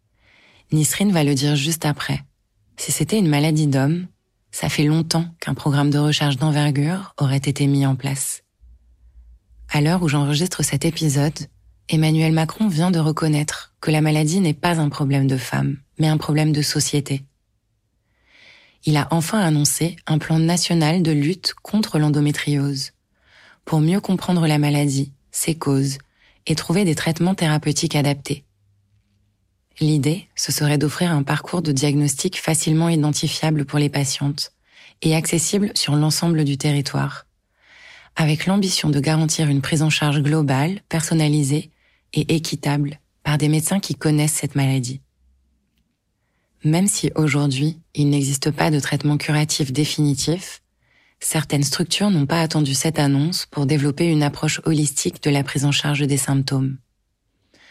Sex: female